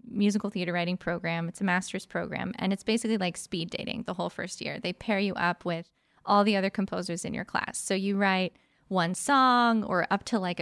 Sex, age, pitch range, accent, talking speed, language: female, 20-39, 185-220 Hz, American, 220 wpm, English